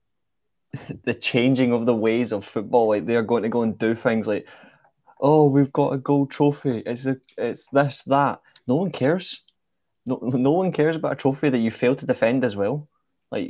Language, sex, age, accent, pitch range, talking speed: English, male, 20-39, British, 115-135 Hz, 200 wpm